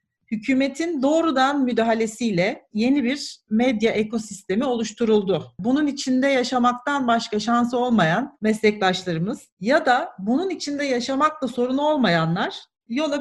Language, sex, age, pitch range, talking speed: English, female, 40-59, 215-270 Hz, 105 wpm